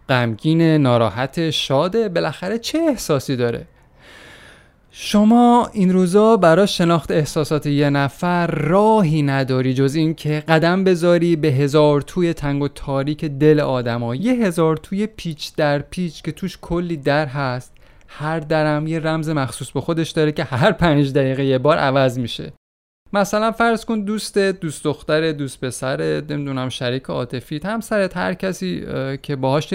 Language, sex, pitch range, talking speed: Persian, male, 140-200 Hz, 150 wpm